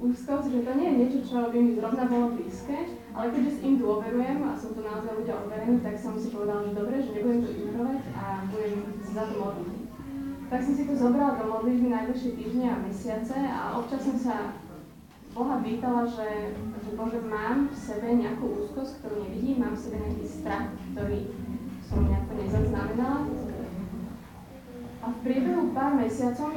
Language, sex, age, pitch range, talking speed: Slovak, female, 20-39, 215-260 Hz, 180 wpm